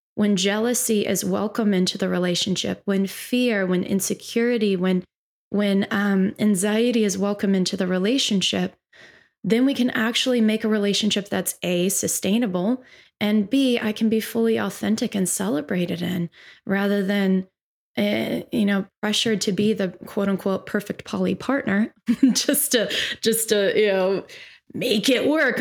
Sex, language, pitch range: female, English, 195-230 Hz